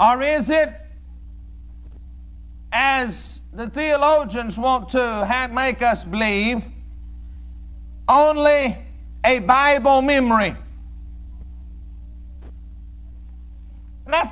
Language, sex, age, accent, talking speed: English, male, 50-69, American, 65 wpm